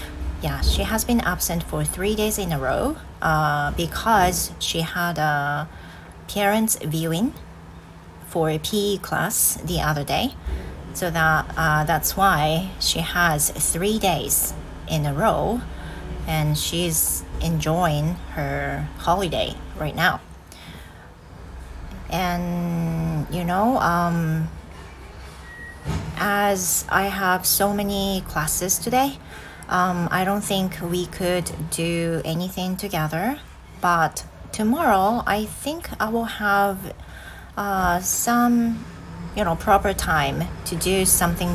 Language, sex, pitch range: Japanese, female, 145-190 Hz